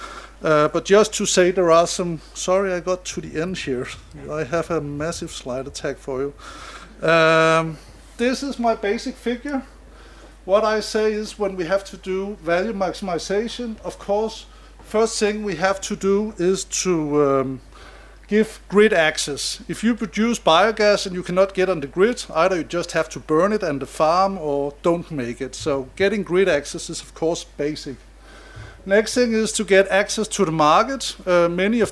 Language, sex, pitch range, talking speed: English, male, 165-205 Hz, 185 wpm